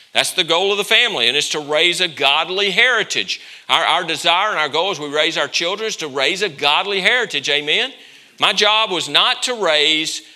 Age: 50-69